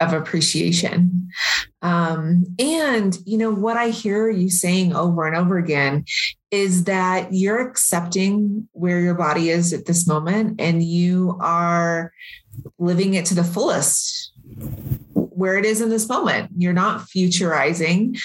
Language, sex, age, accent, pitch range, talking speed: English, female, 30-49, American, 170-200 Hz, 140 wpm